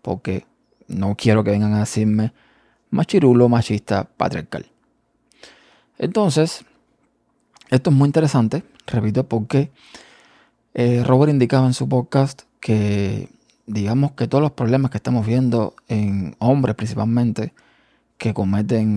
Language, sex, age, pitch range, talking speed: Spanish, male, 20-39, 110-130 Hz, 115 wpm